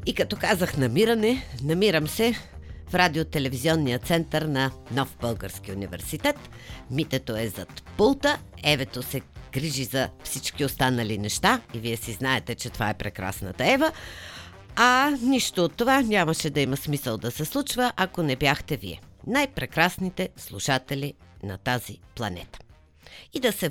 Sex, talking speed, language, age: female, 140 wpm, Bulgarian, 50-69